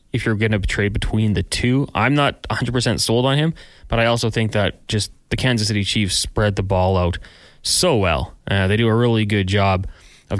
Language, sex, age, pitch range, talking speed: English, male, 20-39, 95-120 Hz, 220 wpm